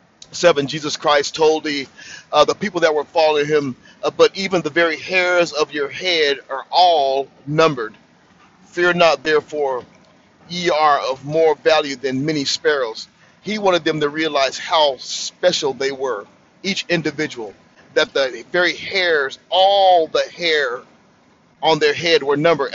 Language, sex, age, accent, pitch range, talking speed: English, male, 40-59, American, 150-175 Hz, 150 wpm